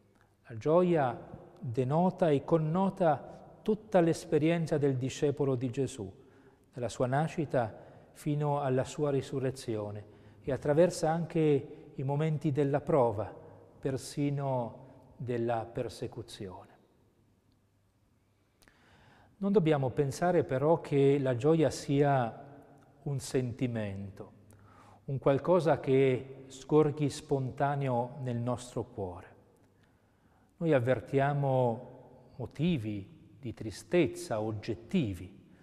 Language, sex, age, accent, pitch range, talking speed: Italian, male, 40-59, native, 115-145 Hz, 90 wpm